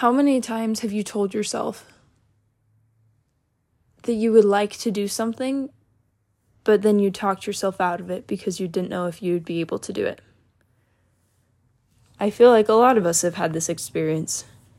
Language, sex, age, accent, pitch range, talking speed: English, female, 10-29, American, 175-215 Hz, 180 wpm